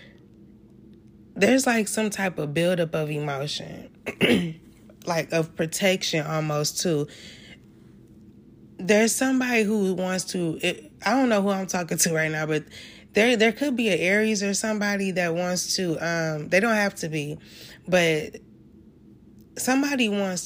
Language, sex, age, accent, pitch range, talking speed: English, female, 20-39, American, 155-200 Hz, 140 wpm